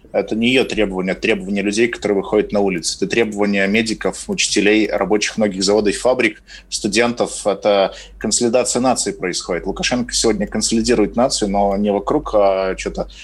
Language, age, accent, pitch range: Russian, 20-39, native, 100-115 Hz